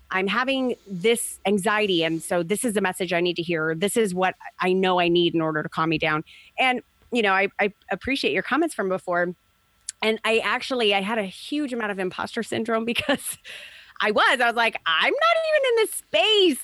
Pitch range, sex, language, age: 185-240 Hz, female, English, 30-49